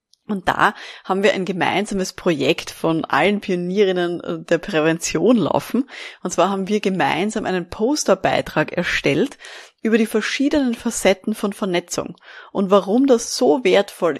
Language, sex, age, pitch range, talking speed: German, female, 20-39, 165-195 Hz, 135 wpm